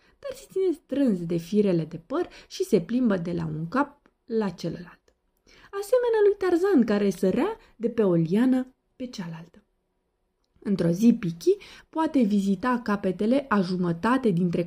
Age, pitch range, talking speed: 20-39, 175-265 Hz, 150 wpm